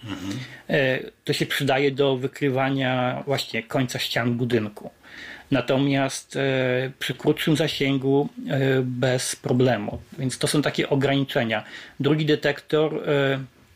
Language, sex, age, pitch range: Polish, male, 40-59, 130-155 Hz